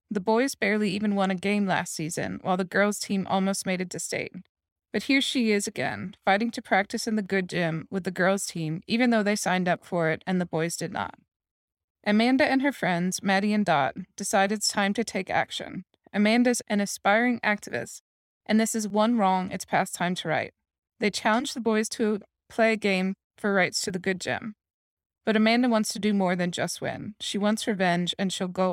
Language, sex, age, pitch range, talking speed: English, female, 20-39, 180-215 Hz, 215 wpm